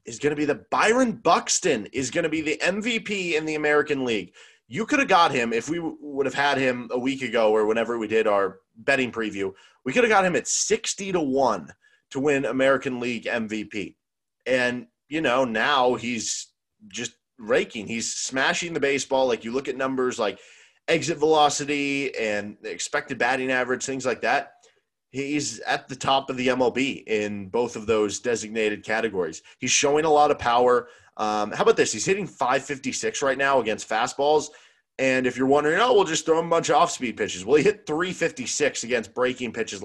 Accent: American